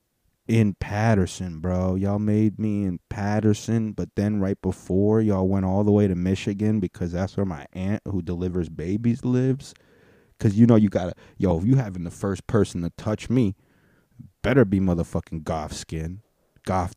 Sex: male